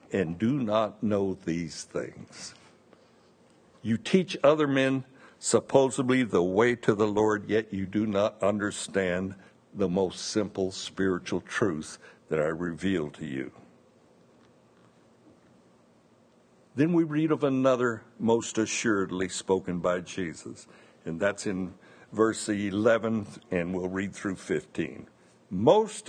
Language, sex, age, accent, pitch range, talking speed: English, male, 60-79, American, 100-150 Hz, 120 wpm